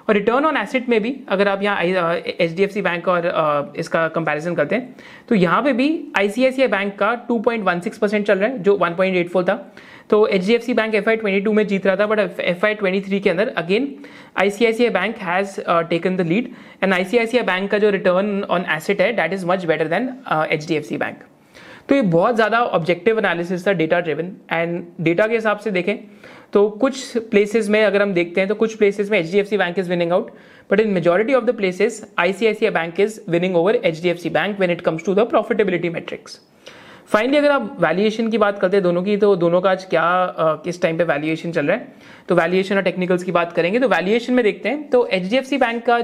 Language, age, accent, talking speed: Hindi, 30-49, native, 195 wpm